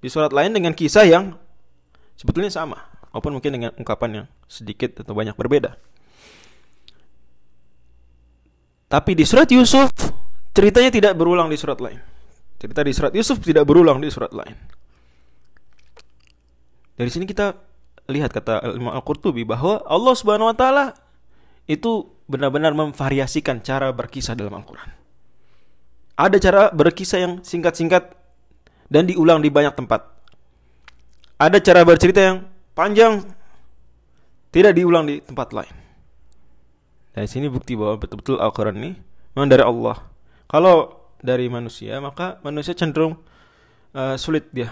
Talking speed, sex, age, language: 125 wpm, male, 20-39, Indonesian